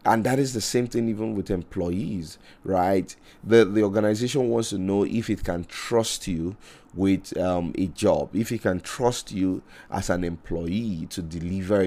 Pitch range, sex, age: 90-110 Hz, male, 30-49